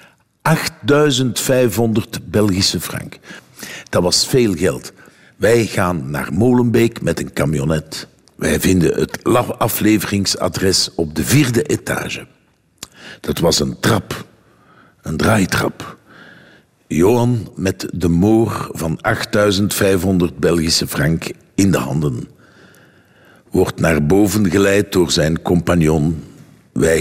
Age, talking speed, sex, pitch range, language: 60-79, 100 wpm, male, 95-125 Hz, Dutch